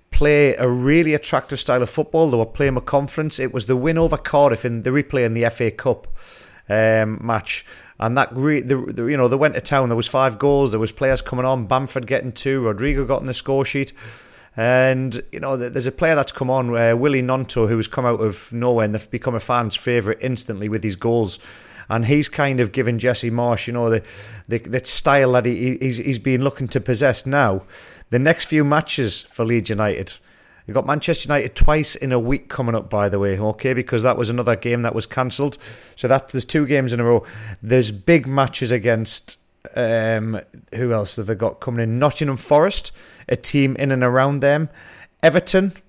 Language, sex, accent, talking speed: English, male, British, 215 wpm